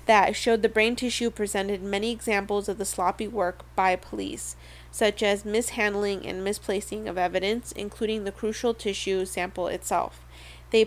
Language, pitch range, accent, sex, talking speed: English, 185-220 Hz, American, female, 155 wpm